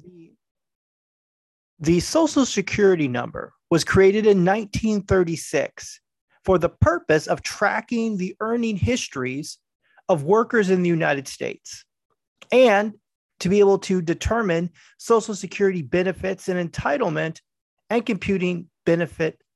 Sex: male